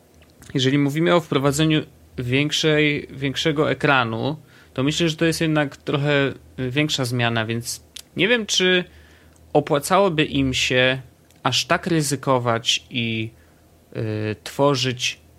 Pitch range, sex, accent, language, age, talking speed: 120-155 Hz, male, native, Polish, 30-49, 105 wpm